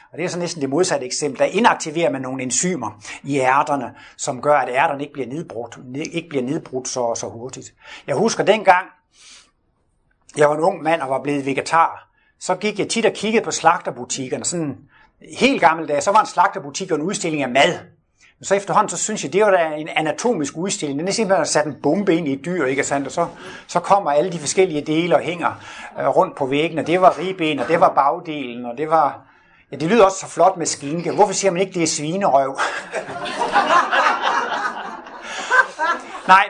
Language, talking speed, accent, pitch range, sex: Danish, 205 wpm, native, 145-195 Hz, male